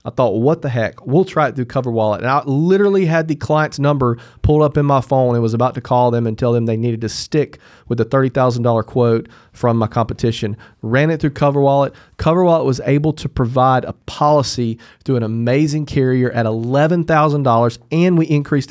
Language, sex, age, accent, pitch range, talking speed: English, male, 40-59, American, 120-150 Hz, 200 wpm